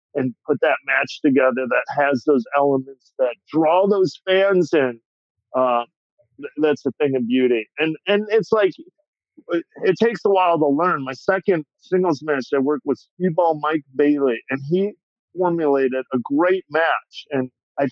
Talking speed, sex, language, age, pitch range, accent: 160 wpm, male, English, 50-69, 140-190 Hz, American